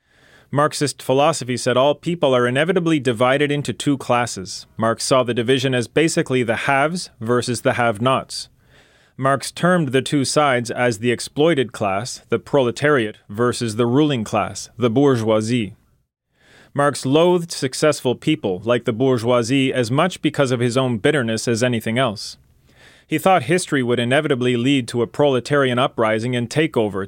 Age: 30-49